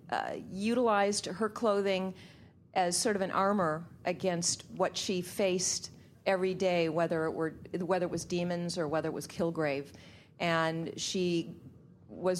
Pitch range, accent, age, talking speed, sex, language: 155-185 Hz, American, 40-59, 130 wpm, female, English